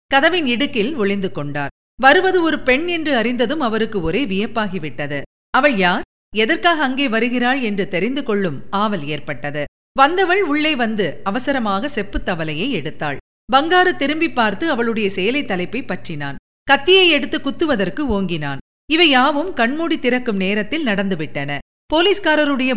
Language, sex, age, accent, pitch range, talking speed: Tamil, female, 50-69, native, 195-285 Hz, 115 wpm